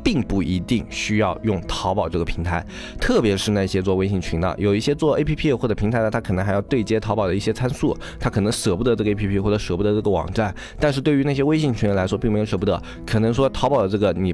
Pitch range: 95-115 Hz